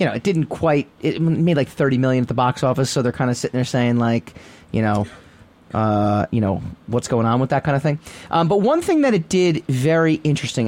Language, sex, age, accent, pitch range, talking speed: English, male, 30-49, American, 130-200 Hz, 245 wpm